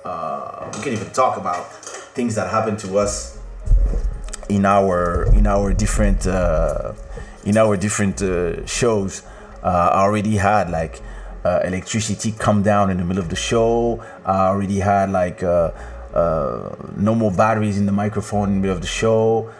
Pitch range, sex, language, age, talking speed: 95-110 Hz, male, English, 30-49, 170 wpm